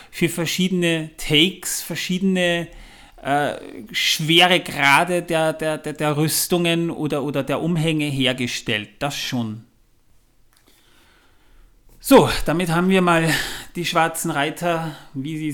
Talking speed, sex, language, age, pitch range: 110 wpm, male, German, 30-49, 135-170 Hz